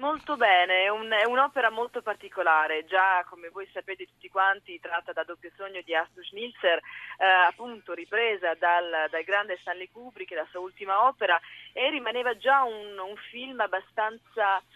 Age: 30-49